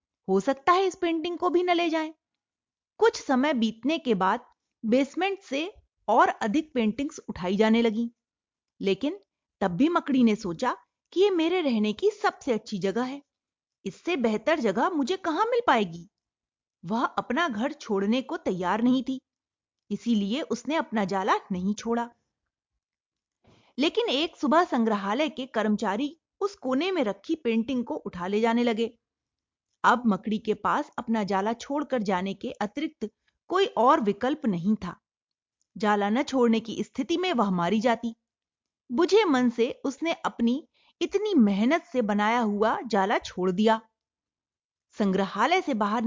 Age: 30-49